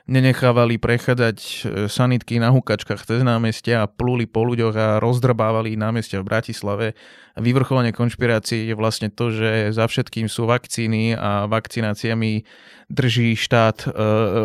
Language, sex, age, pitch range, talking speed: Slovak, male, 20-39, 110-125 Hz, 130 wpm